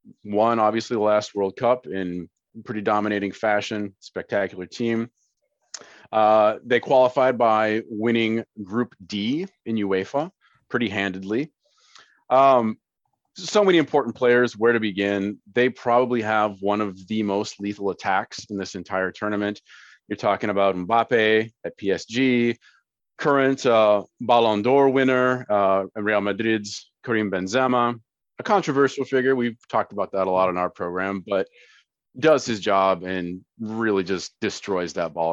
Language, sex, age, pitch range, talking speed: English, male, 30-49, 100-130 Hz, 140 wpm